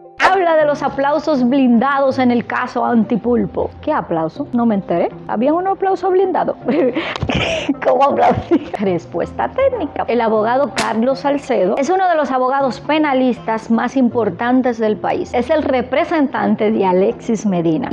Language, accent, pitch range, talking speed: Spanish, American, 215-275 Hz, 135 wpm